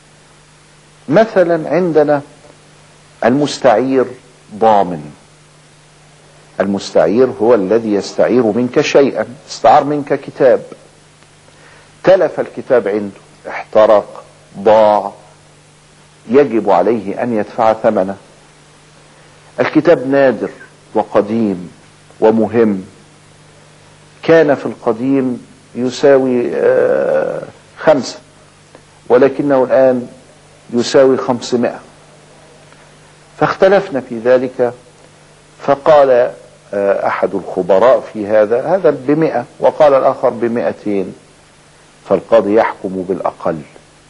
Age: 50-69